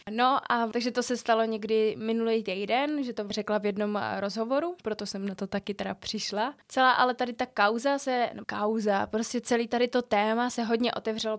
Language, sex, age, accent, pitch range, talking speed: Czech, female, 20-39, native, 210-235 Hz, 200 wpm